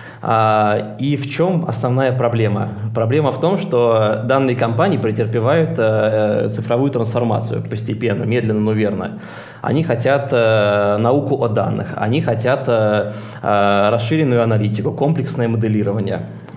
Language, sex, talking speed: Russian, male, 105 wpm